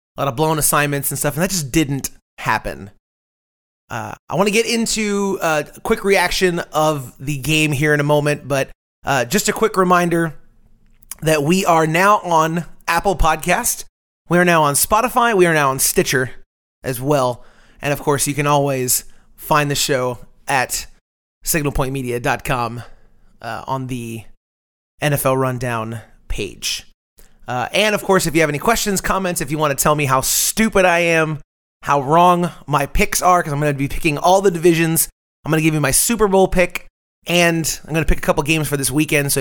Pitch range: 130-175 Hz